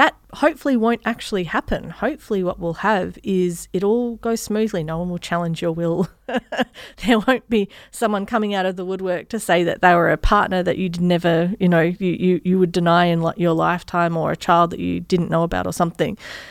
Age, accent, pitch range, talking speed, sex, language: 30-49, Australian, 170-205 Hz, 215 wpm, female, English